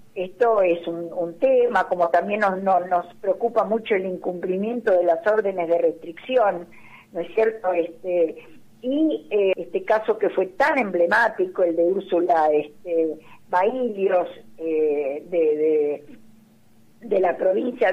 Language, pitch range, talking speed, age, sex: Spanish, 175-240 Hz, 140 wpm, 50-69, female